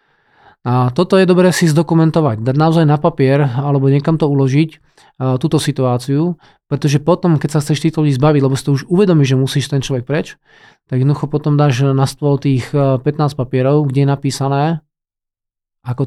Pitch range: 135-165 Hz